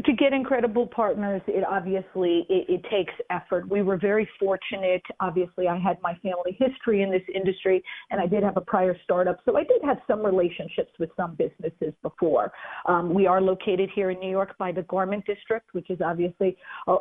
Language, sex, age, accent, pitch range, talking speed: English, female, 50-69, American, 185-235 Hz, 200 wpm